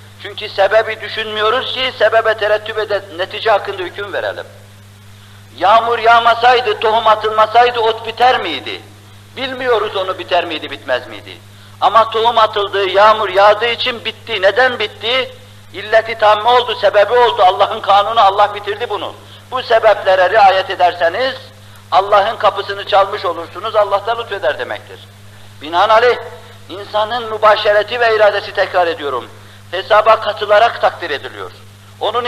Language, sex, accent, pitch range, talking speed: Turkish, male, native, 145-220 Hz, 125 wpm